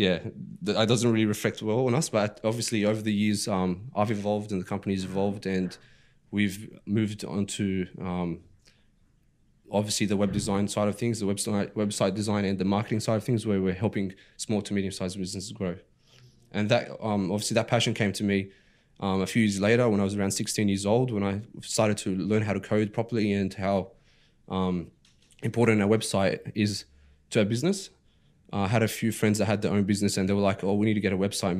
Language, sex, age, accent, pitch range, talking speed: English, male, 20-39, Australian, 95-110 Hz, 215 wpm